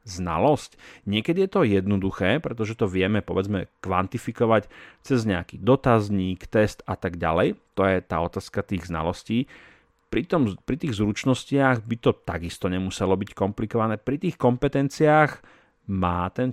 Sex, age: male, 40-59